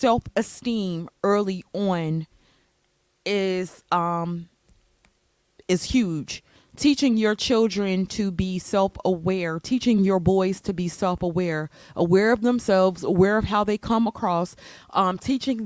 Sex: female